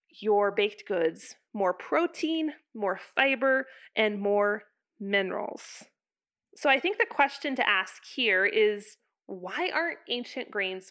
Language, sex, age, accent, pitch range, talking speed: English, female, 20-39, American, 205-285 Hz, 125 wpm